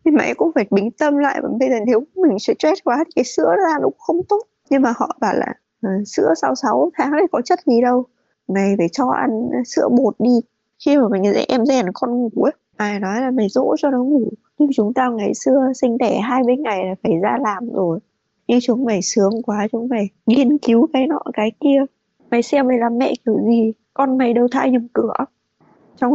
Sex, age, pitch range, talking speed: female, 20-39, 220-280 Hz, 225 wpm